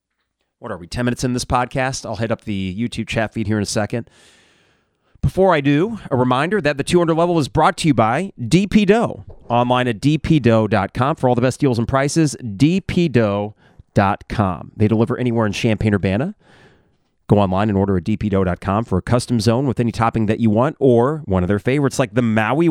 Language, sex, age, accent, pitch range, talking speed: English, male, 30-49, American, 100-135 Hz, 200 wpm